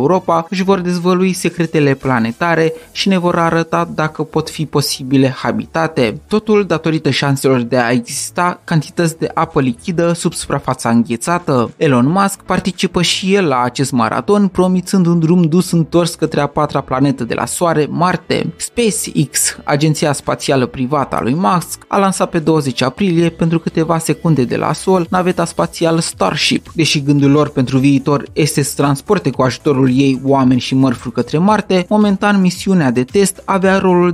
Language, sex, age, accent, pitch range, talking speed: Romanian, male, 20-39, native, 135-180 Hz, 160 wpm